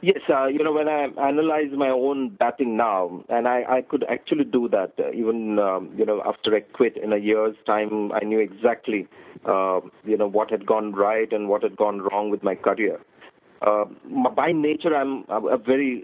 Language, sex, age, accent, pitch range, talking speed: English, male, 40-59, Indian, 110-135 Hz, 200 wpm